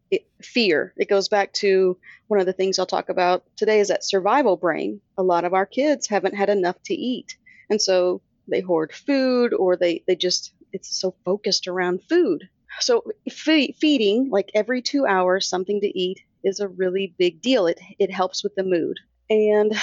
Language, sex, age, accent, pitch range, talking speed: English, female, 30-49, American, 185-240 Hz, 190 wpm